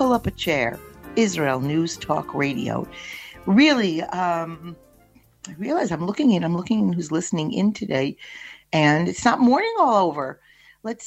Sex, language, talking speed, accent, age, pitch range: female, English, 150 wpm, American, 50-69, 165-225 Hz